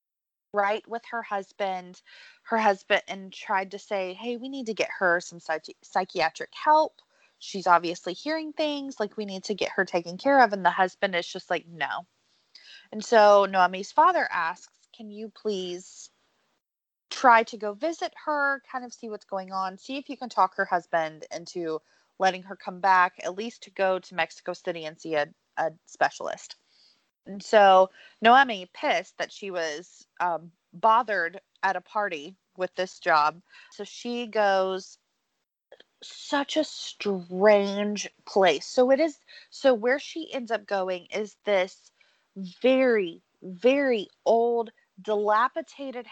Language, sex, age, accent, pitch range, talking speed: English, female, 20-39, American, 185-240 Hz, 155 wpm